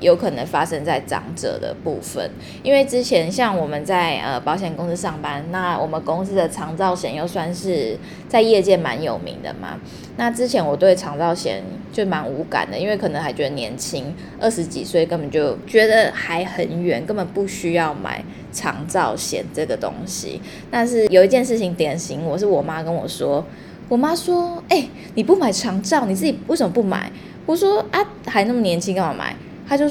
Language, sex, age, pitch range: Chinese, female, 10-29, 170-235 Hz